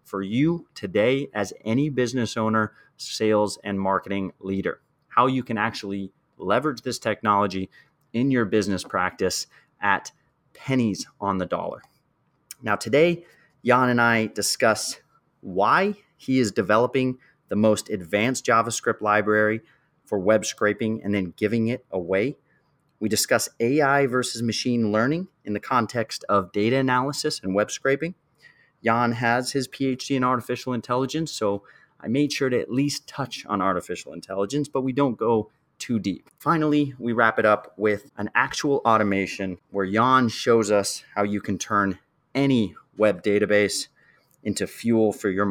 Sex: male